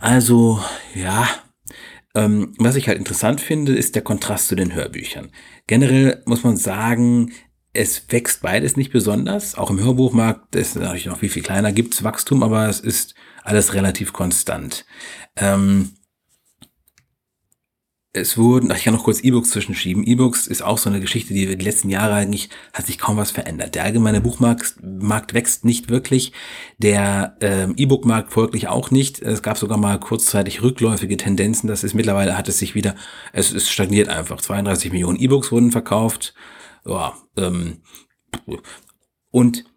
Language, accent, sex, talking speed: German, German, male, 160 wpm